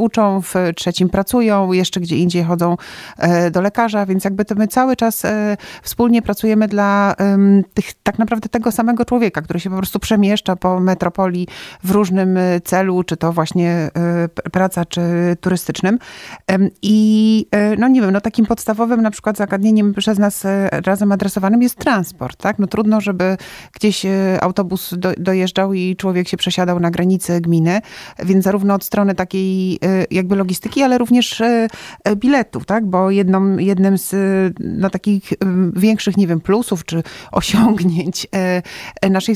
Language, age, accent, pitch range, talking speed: Polish, 30-49, native, 185-220 Hz, 145 wpm